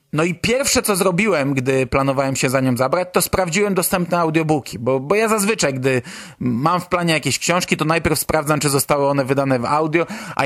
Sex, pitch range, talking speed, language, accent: male, 150-195 Hz, 200 wpm, Polish, native